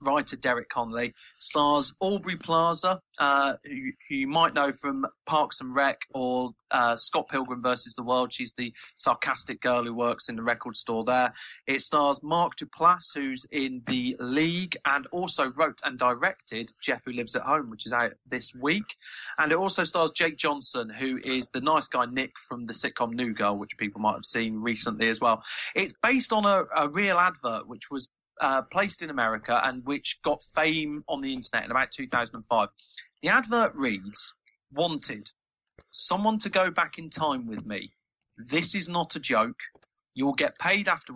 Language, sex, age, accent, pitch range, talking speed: English, male, 30-49, British, 125-175 Hz, 180 wpm